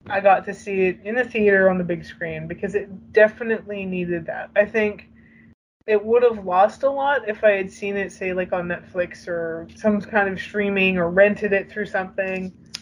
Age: 20-39